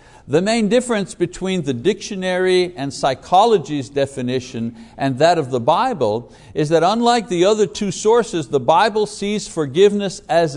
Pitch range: 125-185 Hz